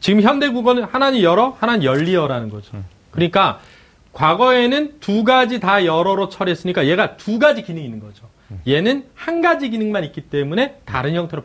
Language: Korean